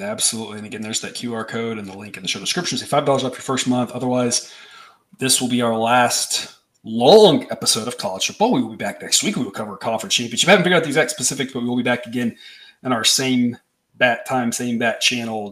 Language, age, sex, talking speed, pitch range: English, 30-49, male, 250 wpm, 115-150 Hz